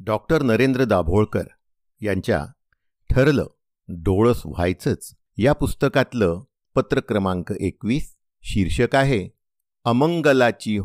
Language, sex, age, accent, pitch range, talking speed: Marathi, male, 50-69, native, 95-130 Hz, 75 wpm